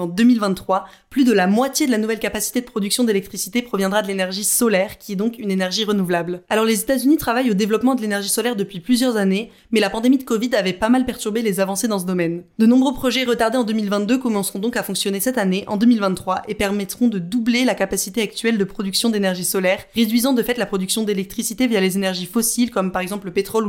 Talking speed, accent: 230 wpm, French